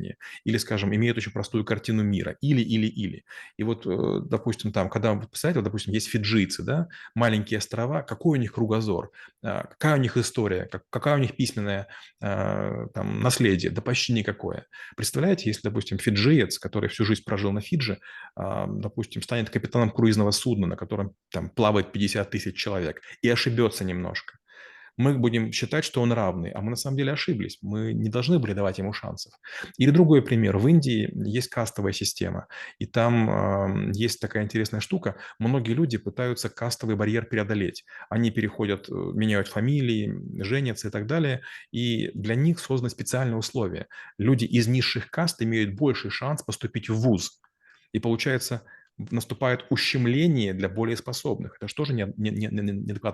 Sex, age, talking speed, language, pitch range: male, 30-49, 155 wpm, Russian, 105-125 Hz